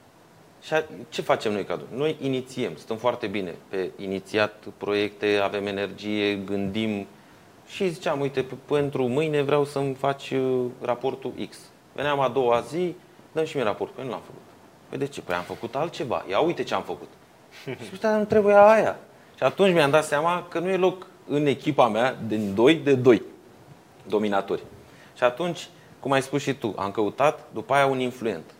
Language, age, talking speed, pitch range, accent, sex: Romanian, 30-49, 180 wpm, 105-140 Hz, native, male